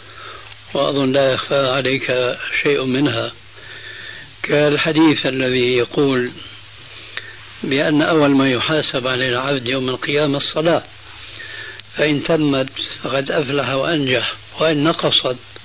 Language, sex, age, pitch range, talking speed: Arabic, male, 60-79, 125-150 Hz, 95 wpm